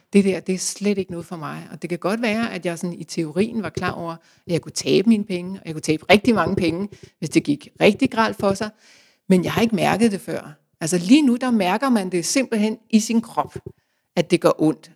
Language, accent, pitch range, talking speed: Danish, native, 165-215 Hz, 255 wpm